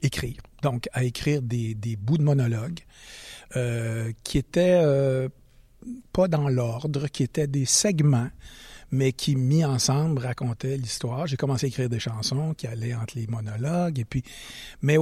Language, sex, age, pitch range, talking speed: French, male, 60-79, 125-160 Hz, 160 wpm